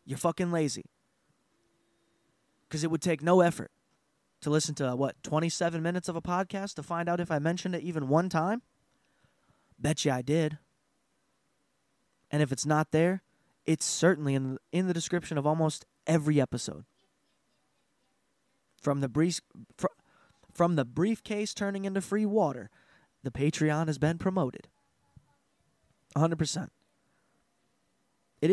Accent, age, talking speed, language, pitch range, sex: American, 20-39, 140 wpm, English, 130-165 Hz, male